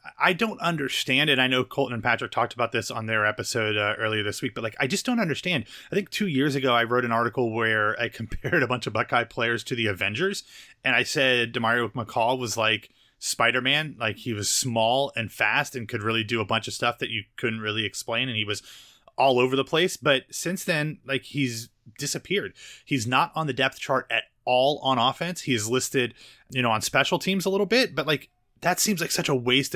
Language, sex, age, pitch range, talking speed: English, male, 30-49, 115-145 Hz, 230 wpm